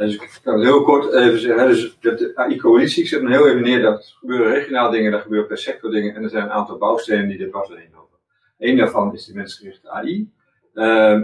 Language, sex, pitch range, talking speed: Dutch, male, 105-135 Hz, 235 wpm